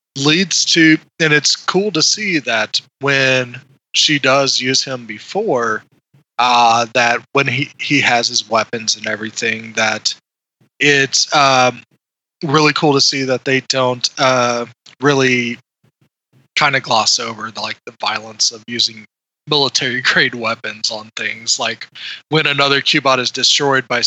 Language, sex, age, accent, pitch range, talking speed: English, male, 20-39, American, 120-140 Hz, 145 wpm